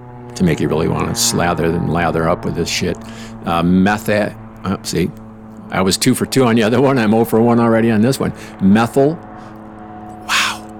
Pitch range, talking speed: 95-115 Hz, 195 wpm